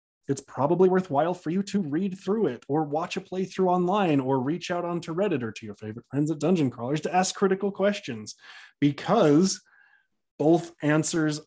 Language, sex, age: English, male, 20-39